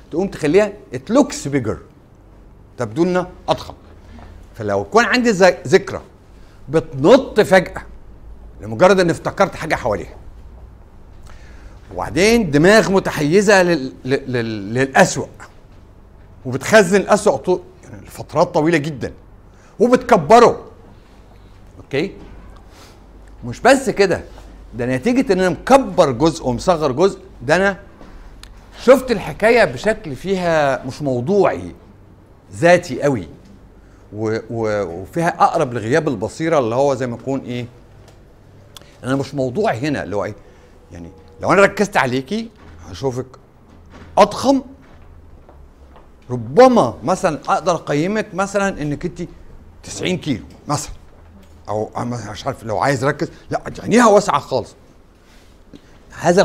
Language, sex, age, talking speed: Arabic, male, 60-79, 105 wpm